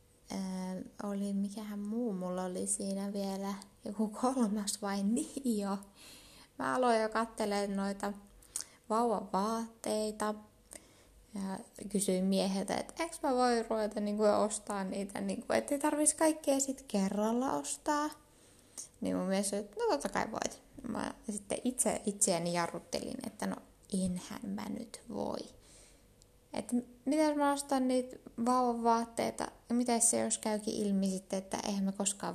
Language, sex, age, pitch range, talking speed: Finnish, female, 20-39, 190-235 Hz, 135 wpm